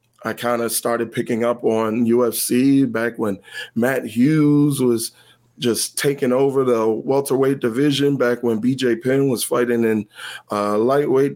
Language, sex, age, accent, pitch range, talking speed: English, male, 20-39, American, 115-130 Hz, 155 wpm